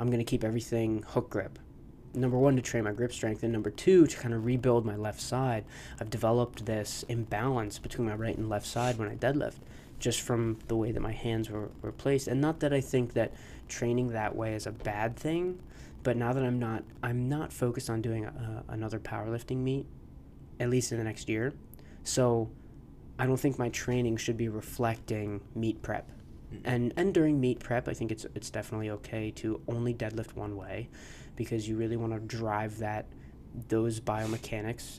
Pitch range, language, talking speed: 110-120 Hz, English, 195 wpm